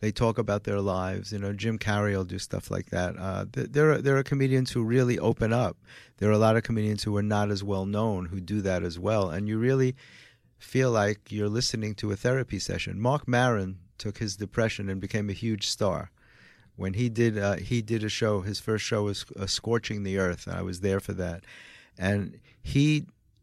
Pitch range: 100-125 Hz